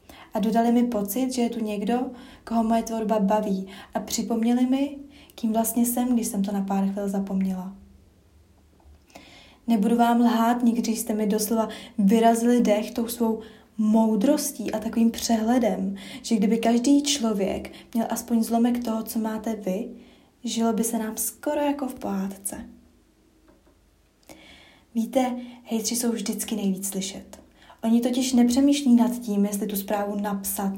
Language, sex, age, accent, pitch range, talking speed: Czech, female, 20-39, native, 210-245 Hz, 145 wpm